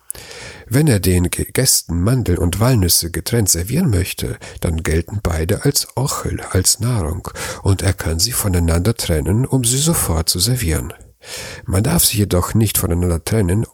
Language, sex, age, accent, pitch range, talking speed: German, male, 60-79, German, 85-110 Hz, 155 wpm